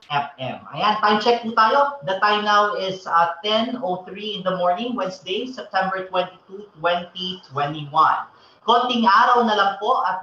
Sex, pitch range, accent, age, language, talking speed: male, 175-215 Hz, native, 30-49, Filipino, 145 wpm